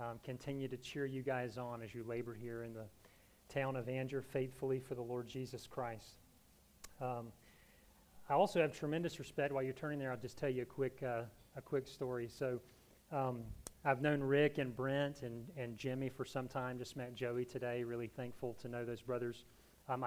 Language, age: English, 30-49